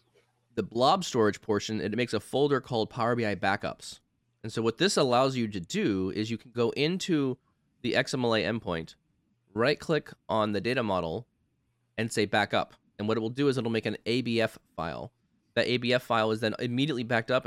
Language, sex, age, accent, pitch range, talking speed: English, male, 20-39, American, 105-125 Hz, 190 wpm